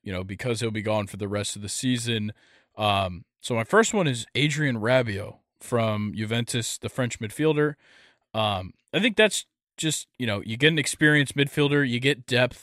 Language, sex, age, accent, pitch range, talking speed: English, male, 20-39, American, 110-130 Hz, 190 wpm